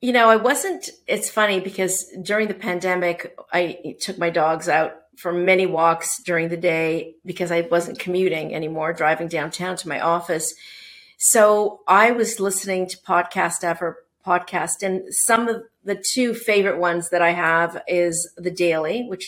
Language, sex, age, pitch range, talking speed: English, female, 50-69, 170-210 Hz, 165 wpm